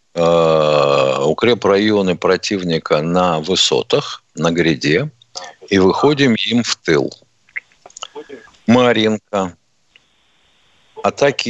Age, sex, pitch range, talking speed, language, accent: 50-69, male, 100-145 Hz, 75 wpm, Russian, native